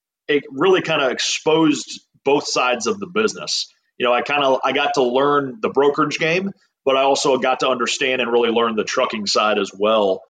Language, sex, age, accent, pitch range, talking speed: English, male, 30-49, American, 125-155 Hz, 210 wpm